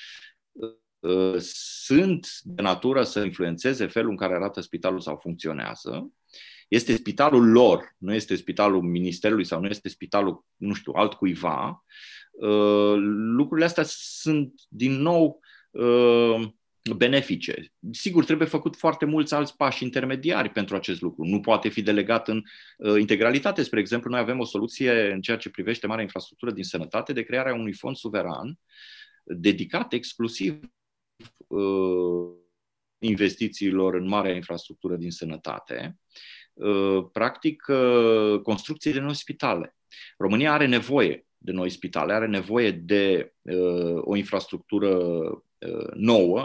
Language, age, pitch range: Romanian, 30-49, 95-120 Hz